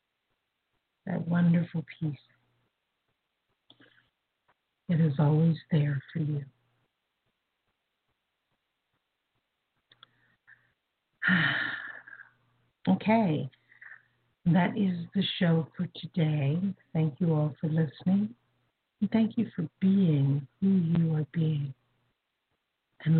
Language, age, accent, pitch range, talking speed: English, 60-79, American, 140-175 Hz, 80 wpm